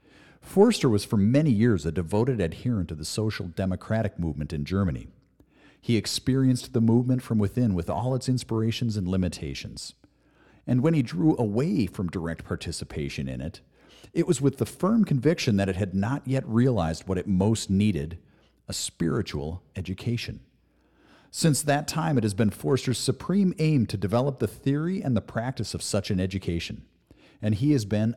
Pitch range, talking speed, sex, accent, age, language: 95-130 Hz, 170 wpm, male, American, 50-69, English